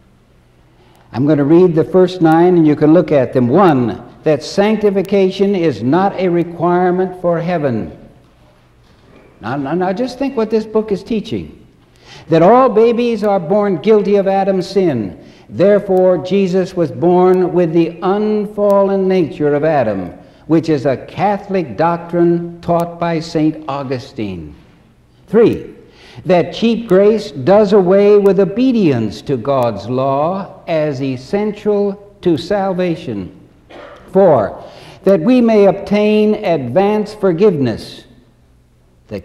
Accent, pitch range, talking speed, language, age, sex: American, 150-200 Hz, 125 wpm, English, 60-79, male